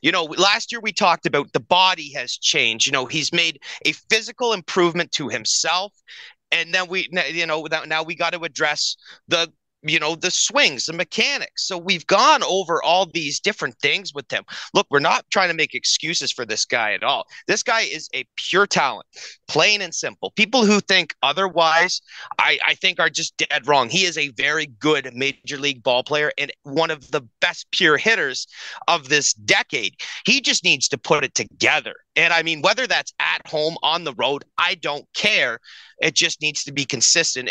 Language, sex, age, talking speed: English, male, 30-49, 200 wpm